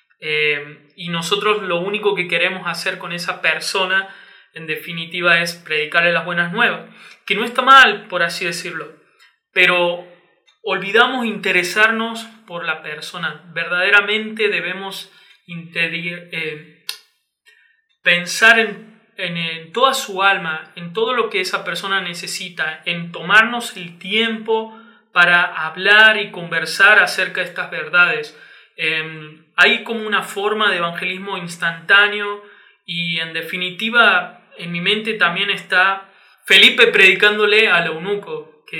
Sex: male